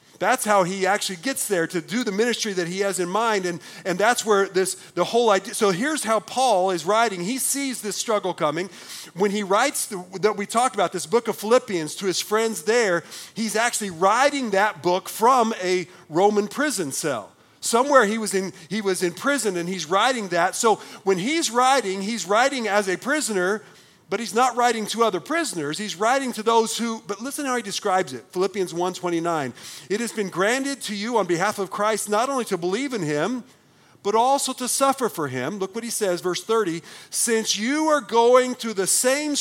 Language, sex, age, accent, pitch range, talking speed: English, male, 40-59, American, 185-240 Hz, 205 wpm